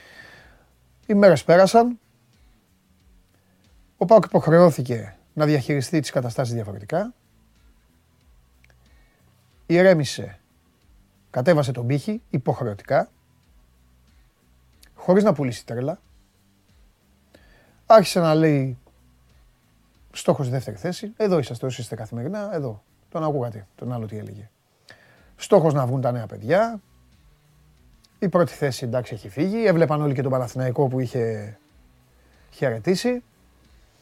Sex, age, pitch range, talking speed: male, 30-49, 100-170 Hz, 105 wpm